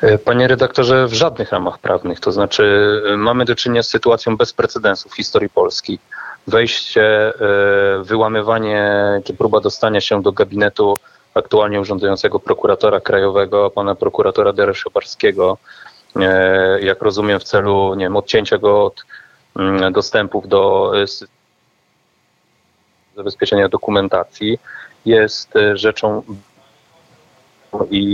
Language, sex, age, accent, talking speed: Polish, male, 30-49, native, 105 wpm